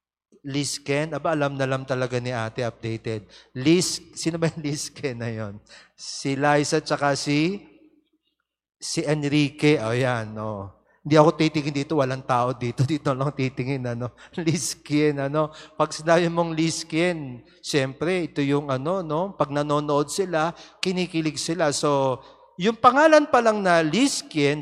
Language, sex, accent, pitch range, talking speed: Filipino, male, native, 135-170 Hz, 150 wpm